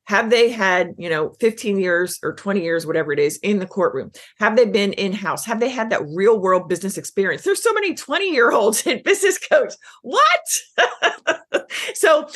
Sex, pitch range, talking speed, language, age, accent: female, 190-290 Hz, 175 wpm, English, 40-59, American